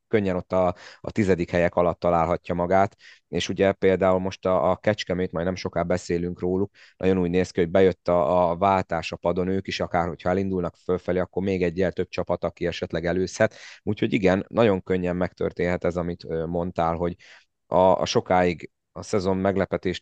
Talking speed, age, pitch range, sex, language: 185 wpm, 30-49, 85-95 Hz, male, Hungarian